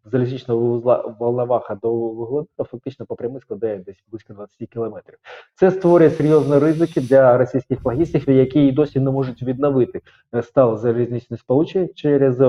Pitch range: 115-135 Hz